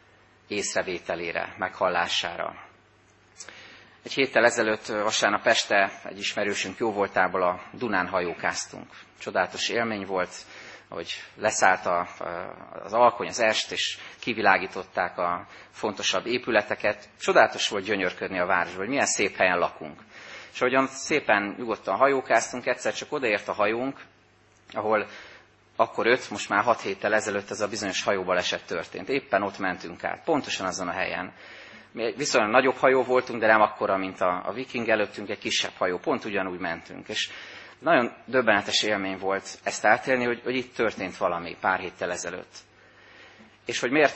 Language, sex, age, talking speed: Hungarian, male, 30-49, 145 wpm